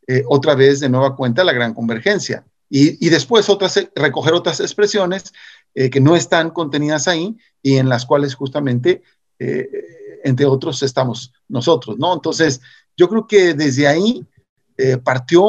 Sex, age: male, 50-69